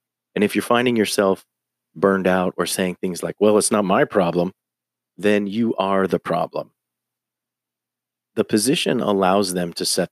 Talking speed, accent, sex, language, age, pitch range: 160 wpm, American, male, English, 40-59, 90-110 Hz